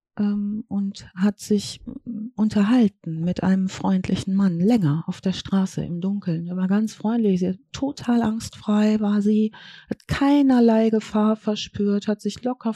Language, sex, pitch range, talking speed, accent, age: German, female, 195-240 Hz, 145 wpm, German, 40-59